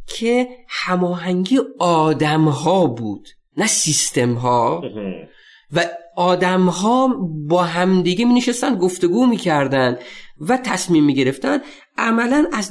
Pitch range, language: 150-225 Hz, Persian